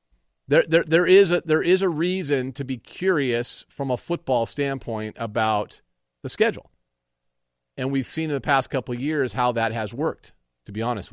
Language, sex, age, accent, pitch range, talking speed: English, male, 40-59, American, 105-140 Hz, 190 wpm